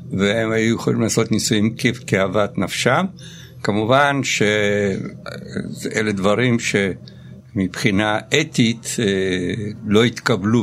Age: 60-79